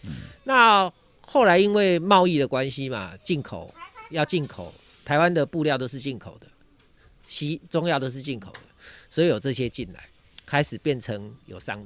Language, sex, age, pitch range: Chinese, male, 40-59, 110-165 Hz